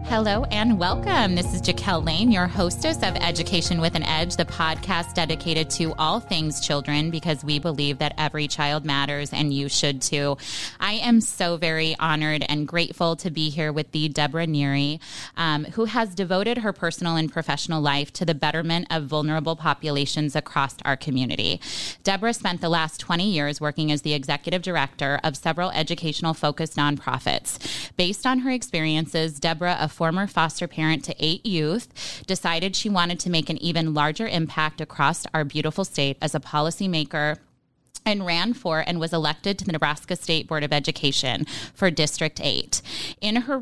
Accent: American